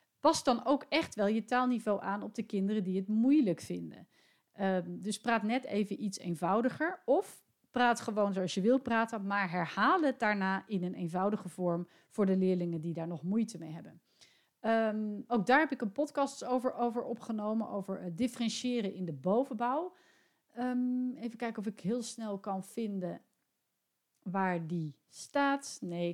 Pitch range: 190-250 Hz